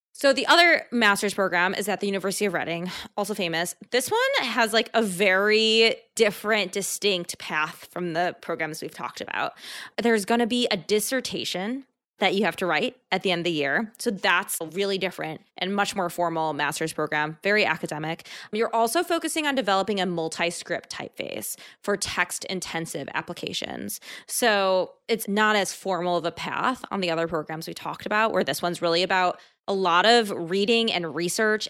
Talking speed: 180 wpm